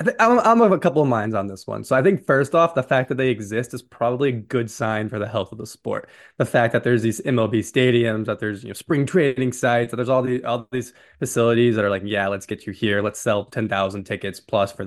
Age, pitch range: 20-39, 110-145 Hz